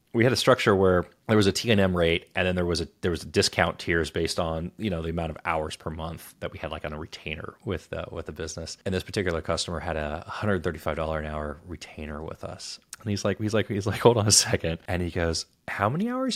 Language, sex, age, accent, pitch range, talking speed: English, male, 30-49, American, 80-105 Hz, 270 wpm